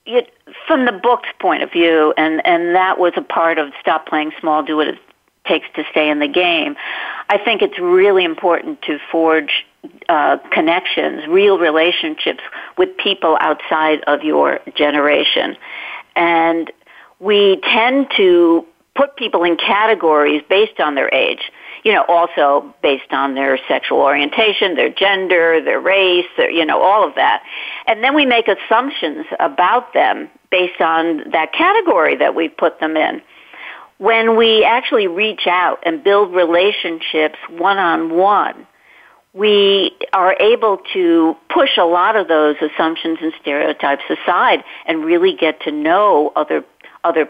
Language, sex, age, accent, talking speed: English, female, 50-69, American, 150 wpm